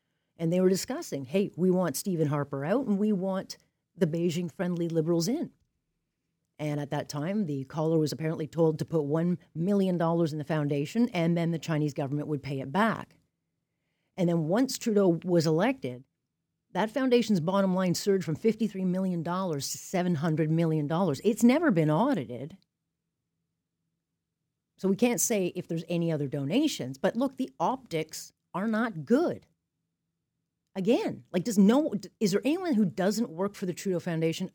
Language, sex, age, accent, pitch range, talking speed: English, female, 40-59, American, 155-195 Hz, 160 wpm